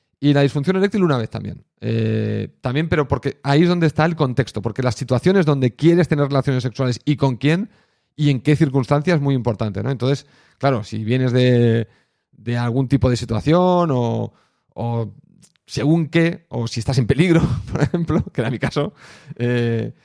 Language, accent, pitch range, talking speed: Spanish, Spanish, 120-140 Hz, 185 wpm